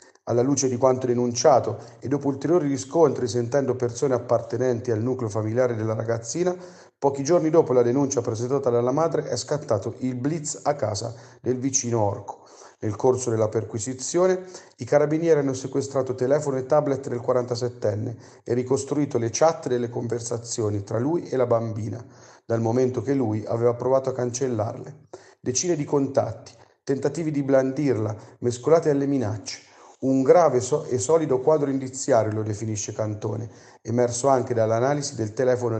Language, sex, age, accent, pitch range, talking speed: Italian, male, 40-59, native, 115-140 Hz, 150 wpm